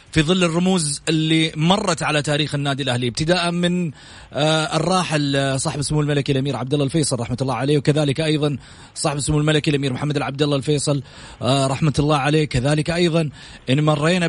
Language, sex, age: Arabic, male, 30-49